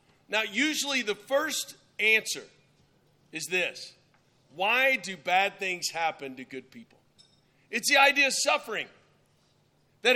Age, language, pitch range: 40-59, English, 155-220 Hz